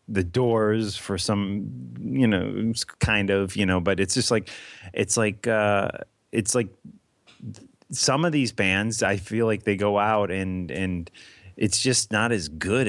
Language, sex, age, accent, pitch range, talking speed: English, male, 30-49, American, 95-115 Hz, 170 wpm